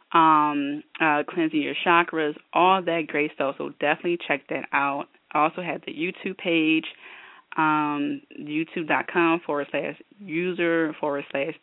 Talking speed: 135 wpm